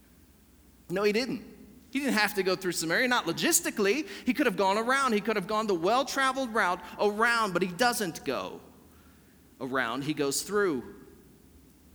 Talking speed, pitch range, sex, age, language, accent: 165 wpm, 165-240 Hz, male, 40-59, English, American